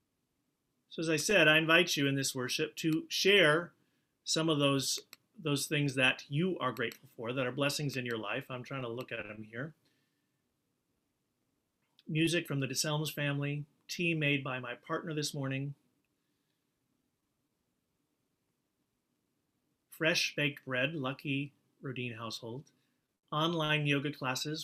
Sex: male